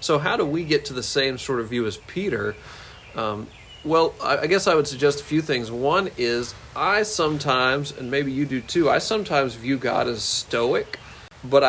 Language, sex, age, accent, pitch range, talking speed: English, male, 40-59, American, 120-150 Hz, 200 wpm